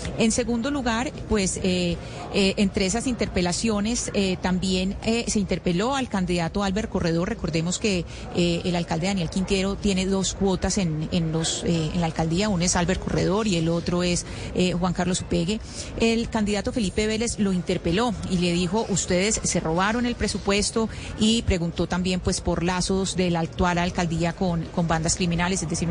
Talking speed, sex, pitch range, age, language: 180 wpm, female, 175-205 Hz, 30-49, Spanish